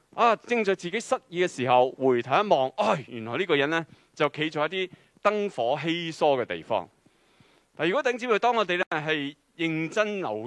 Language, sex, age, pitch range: Chinese, male, 20-39, 140-200 Hz